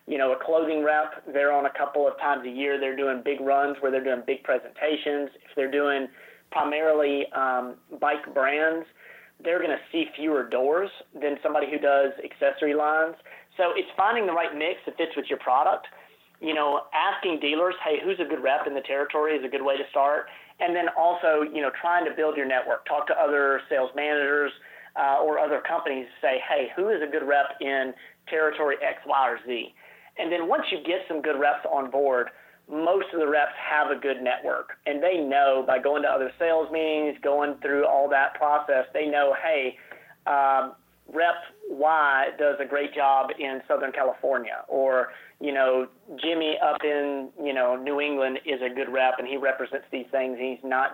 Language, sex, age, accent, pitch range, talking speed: English, male, 30-49, American, 135-155 Hz, 200 wpm